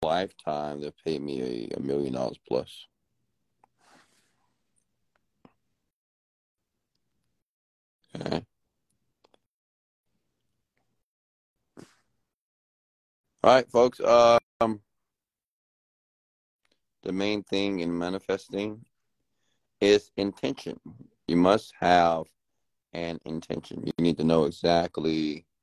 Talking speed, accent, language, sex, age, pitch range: 70 wpm, American, English, male, 50-69, 85-120 Hz